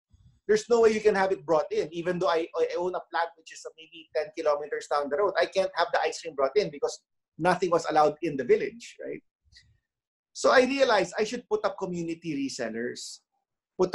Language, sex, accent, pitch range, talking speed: English, male, Filipino, 155-235 Hz, 215 wpm